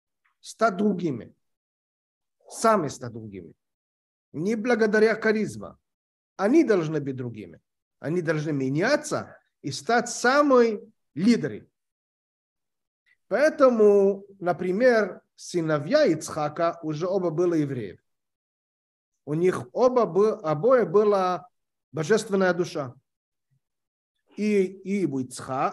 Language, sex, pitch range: Russian, male, 165-230 Hz